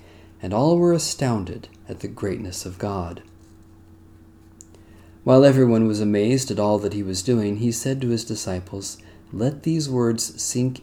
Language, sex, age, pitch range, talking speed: English, male, 40-59, 90-120 Hz, 155 wpm